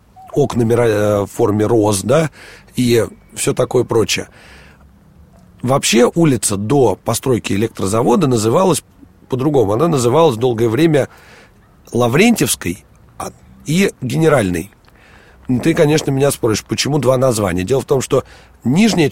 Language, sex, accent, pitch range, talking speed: Russian, male, native, 105-135 Hz, 110 wpm